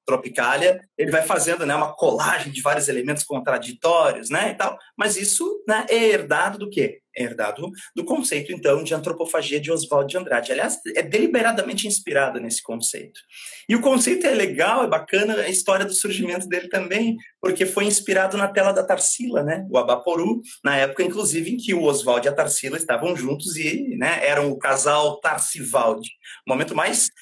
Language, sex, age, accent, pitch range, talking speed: Portuguese, male, 30-49, Brazilian, 145-205 Hz, 180 wpm